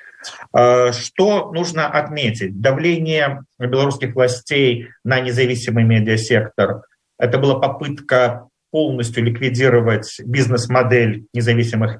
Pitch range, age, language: 120-140 Hz, 40-59, Russian